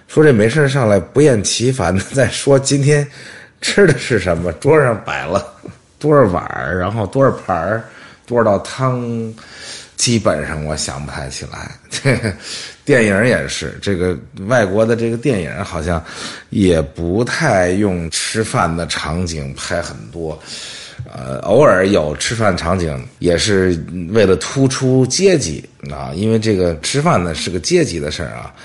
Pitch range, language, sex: 85-115 Hz, English, male